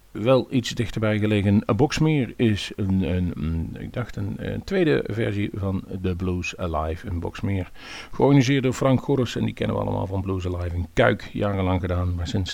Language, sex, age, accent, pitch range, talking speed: Dutch, male, 40-59, Dutch, 95-125 Hz, 165 wpm